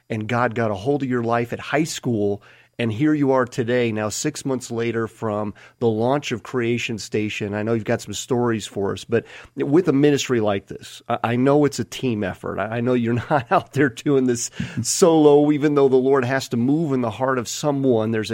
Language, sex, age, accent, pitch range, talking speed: English, male, 30-49, American, 110-140 Hz, 225 wpm